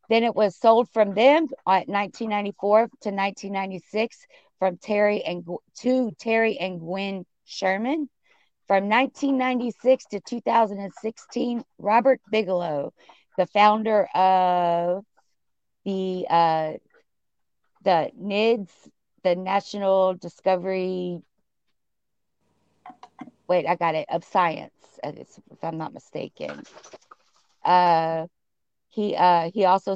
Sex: female